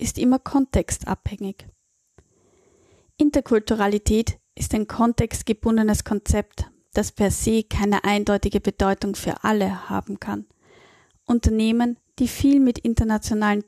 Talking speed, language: 100 wpm, German